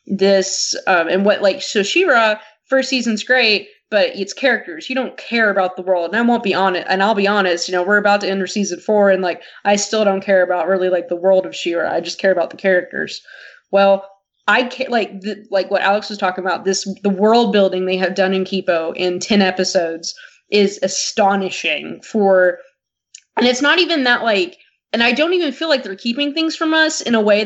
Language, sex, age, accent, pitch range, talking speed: English, female, 20-39, American, 190-245 Hz, 225 wpm